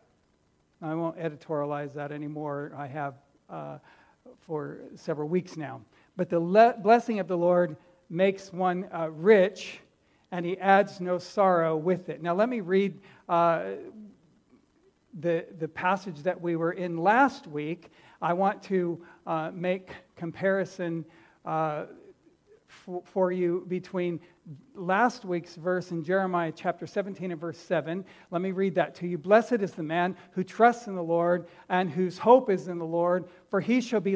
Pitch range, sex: 170-205 Hz, male